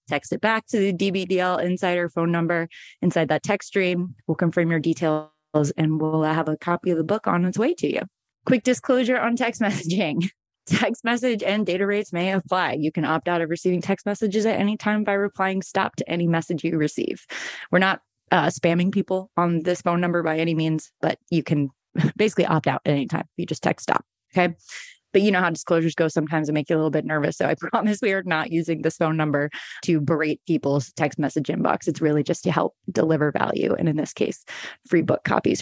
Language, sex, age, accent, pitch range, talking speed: English, female, 20-39, American, 160-190 Hz, 220 wpm